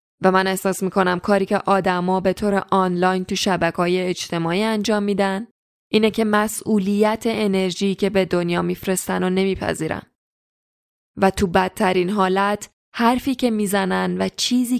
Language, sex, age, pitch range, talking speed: Persian, female, 10-29, 185-215 Hz, 140 wpm